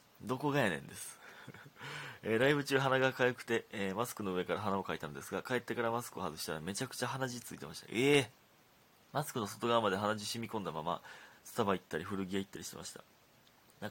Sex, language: male, Japanese